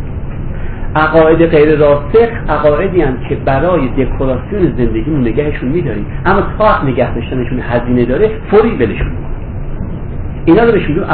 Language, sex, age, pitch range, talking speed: Persian, male, 50-69, 120-175 Hz, 120 wpm